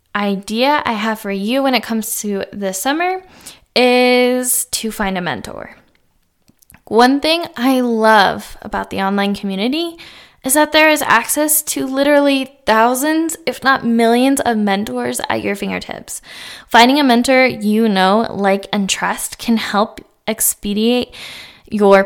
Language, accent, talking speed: English, American, 140 wpm